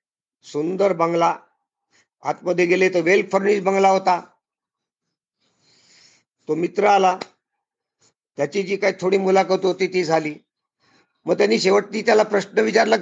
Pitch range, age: 150-200 Hz, 50-69